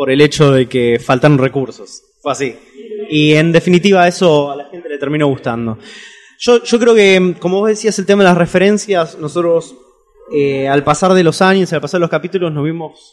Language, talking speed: Spanish, 205 wpm